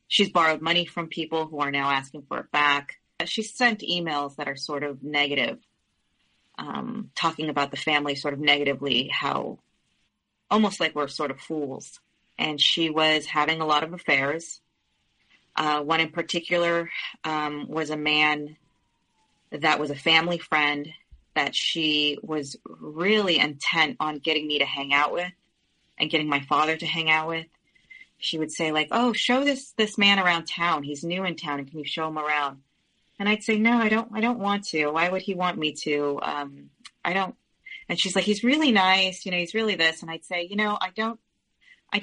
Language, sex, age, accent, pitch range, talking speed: English, female, 30-49, American, 150-195 Hz, 195 wpm